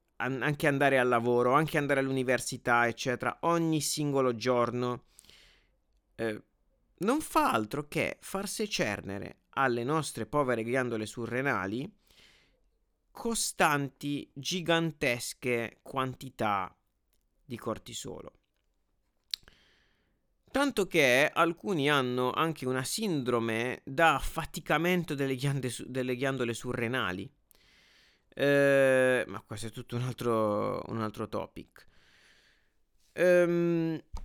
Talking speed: 95 wpm